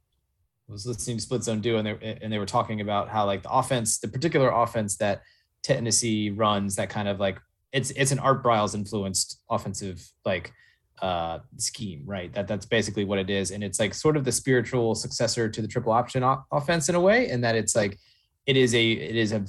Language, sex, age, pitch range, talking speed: English, male, 20-39, 105-120 Hz, 220 wpm